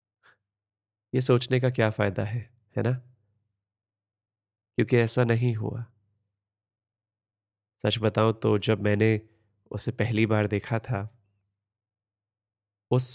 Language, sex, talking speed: Hindi, male, 105 wpm